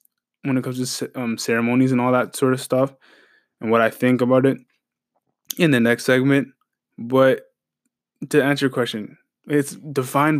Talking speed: 165 wpm